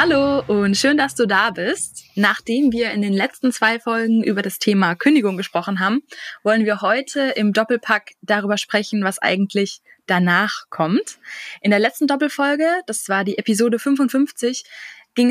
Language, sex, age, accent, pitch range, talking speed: German, female, 20-39, German, 195-245 Hz, 160 wpm